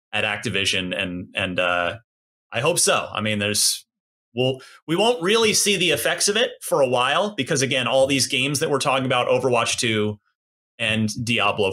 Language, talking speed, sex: English, 185 wpm, male